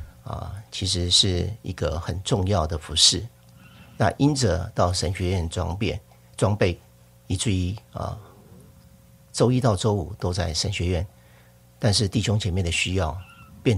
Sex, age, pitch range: male, 50-69, 75-100 Hz